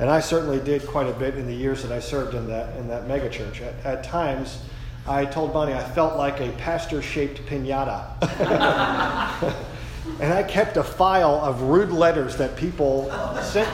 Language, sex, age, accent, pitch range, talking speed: English, male, 40-59, American, 130-160 Hz, 180 wpm